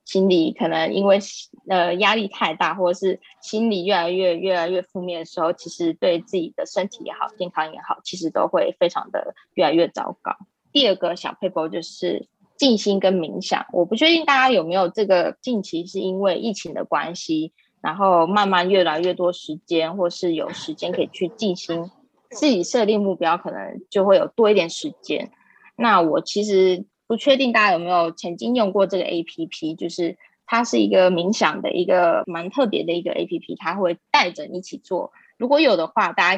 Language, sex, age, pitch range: Chinese, female, 20-39, 170-205 Hz